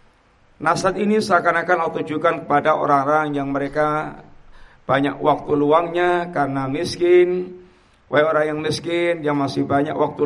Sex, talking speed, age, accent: male, 130 wpm, 60-79, native